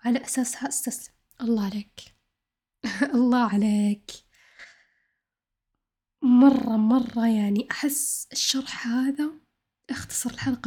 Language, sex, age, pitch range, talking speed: Arabic, female, 10-29, 225-265 Hz, 85 wpm